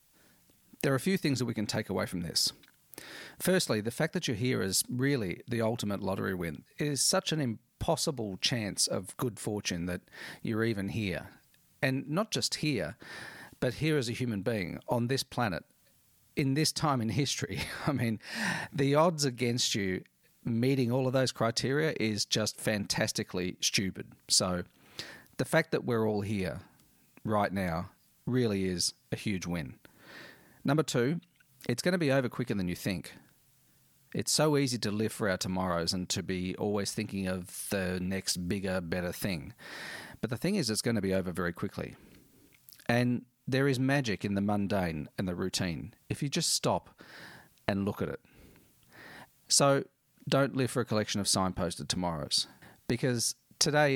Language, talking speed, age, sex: English, 170 wpm, 40-59, male